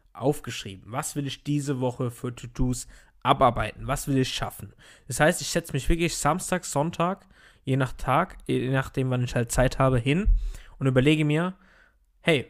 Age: 20-39